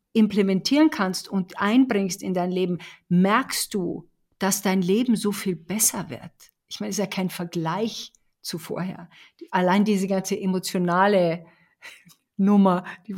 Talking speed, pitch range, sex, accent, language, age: 140 wpm, 175-210 Hz, female, German, German, 50-69